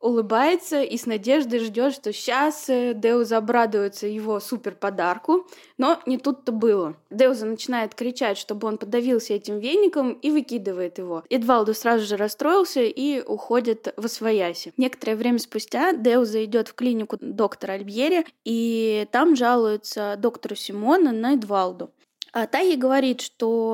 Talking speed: 135 wpm